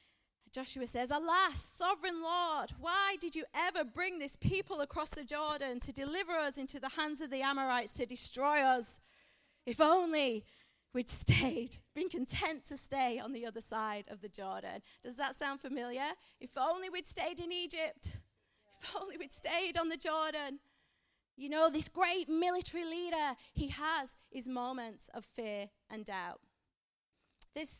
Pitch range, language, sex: 240-320 Hz, English, female